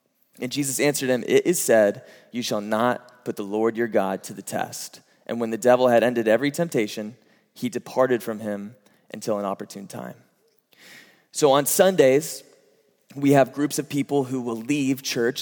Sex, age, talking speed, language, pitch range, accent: male, 20-39, 180 wpm, English, 115-145 Hz, American